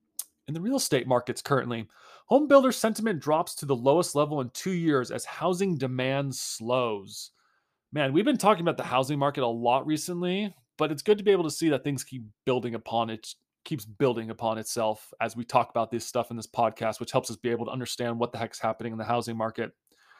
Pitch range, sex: 125-160 Hz, male